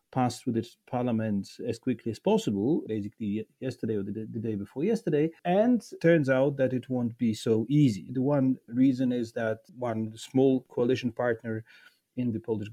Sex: male